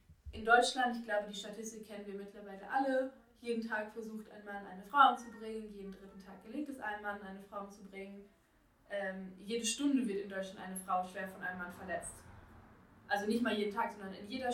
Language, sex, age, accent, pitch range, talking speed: German, female, 20-39, German, 195-220 Hz, 200 wpm